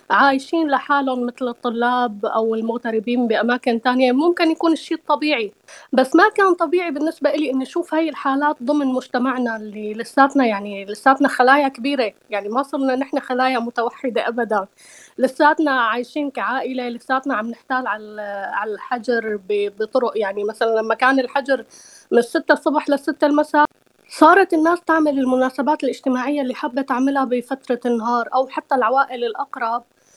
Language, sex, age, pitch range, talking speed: Arabic, female, 20-39, 230-285 Hz, 145 wpm